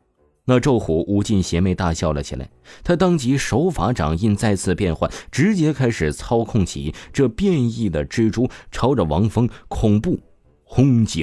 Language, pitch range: Chinese, 85-120 Hz